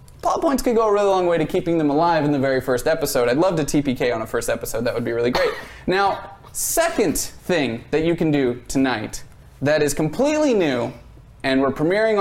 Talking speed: 215 wpm